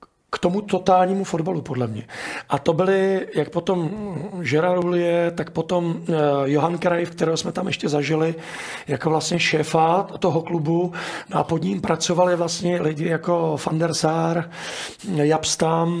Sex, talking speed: male, 145 wpm